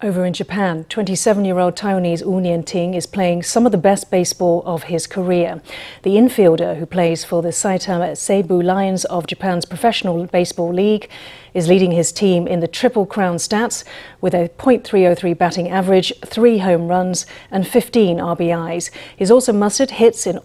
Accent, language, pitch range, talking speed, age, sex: British, English, 175-200 Hz, 165 wpm, 40-59, female